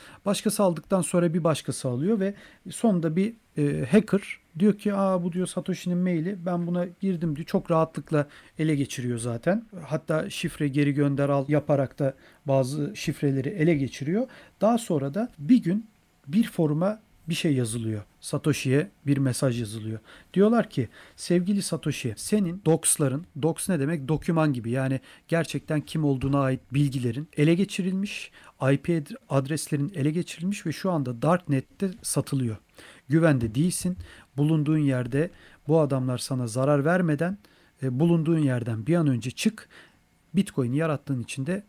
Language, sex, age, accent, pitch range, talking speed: Turkish, male, 40-59, native, 135-180 Hz, 145 wpm